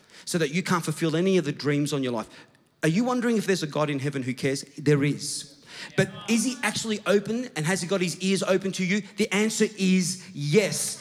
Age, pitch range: 40-59, 145-205 Hz